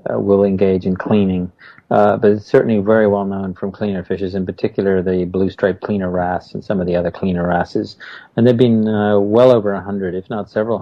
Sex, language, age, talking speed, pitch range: male, English, 40-59, 220 wpm, 95-110 Hz